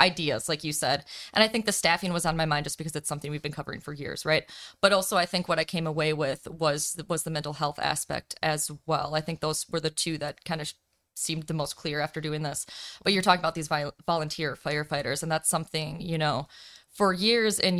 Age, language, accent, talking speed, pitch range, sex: 20-39, English, American, 240 wpm, 155-175 Hz, female